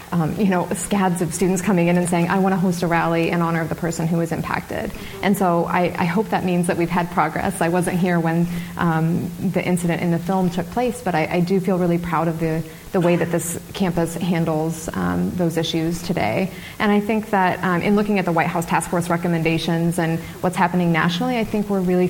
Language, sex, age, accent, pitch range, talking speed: English, female, 20-39, American, 165-180 Hz, 235 wpm